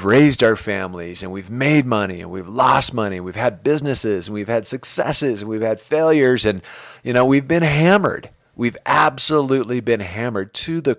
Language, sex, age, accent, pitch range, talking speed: English, male, 40-59, American, 105-140 Hz, 190 wpm